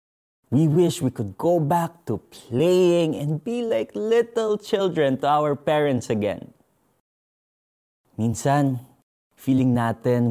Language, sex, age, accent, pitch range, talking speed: Filipino, male, 20-39, native, 110-155 Hz, 115 wpm